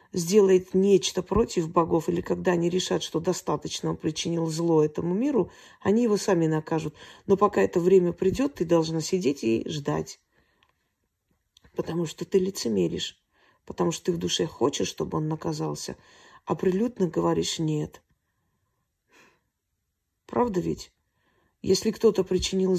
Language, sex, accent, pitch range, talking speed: Russian, female, native, 160-200 Hz, 135 wpm